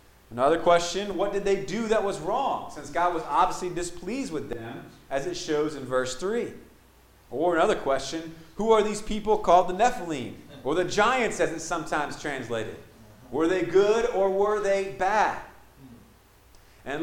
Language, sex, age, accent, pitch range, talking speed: English, male, 30-49, American, 150-200 Hz, 165 wpm